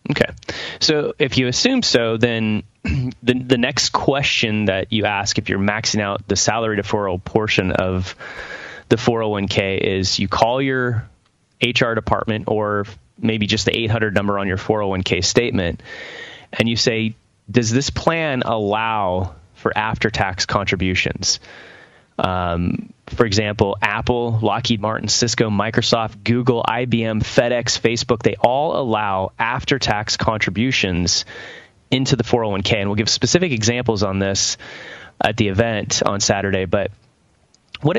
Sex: male